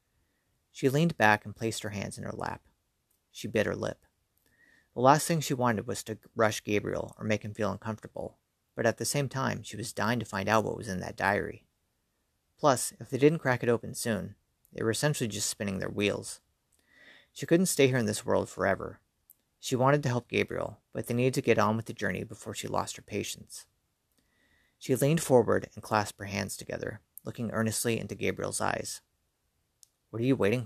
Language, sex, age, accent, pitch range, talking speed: English, male, 40-59, American, 100-130 Hz, 200 wpm